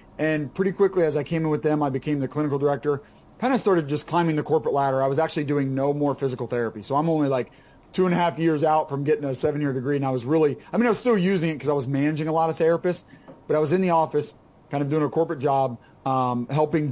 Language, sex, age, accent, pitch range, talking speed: English, male, 30-49, American, 135-160 Hz, 280 wpm